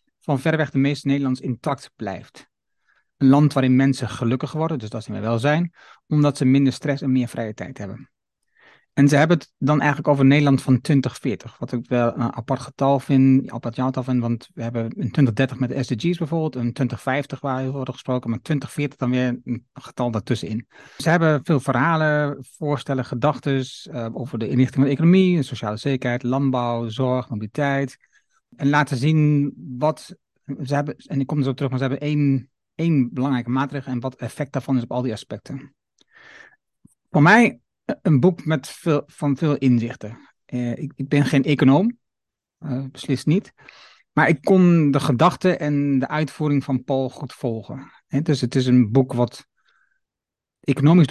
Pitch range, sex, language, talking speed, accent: 125-150 Hz, male, Dutch, 180 wpm, Dutch